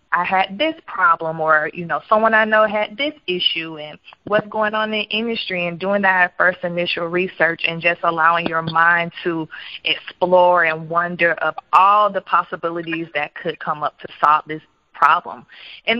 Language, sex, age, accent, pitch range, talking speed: English, female, 20-39, American, 170-210 Hz, 180 wpm